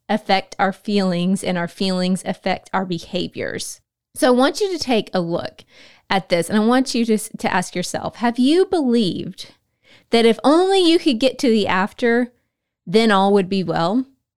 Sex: female